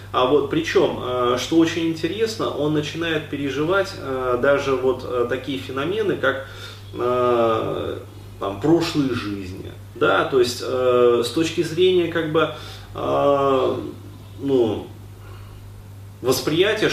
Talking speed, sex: 95 wpm, male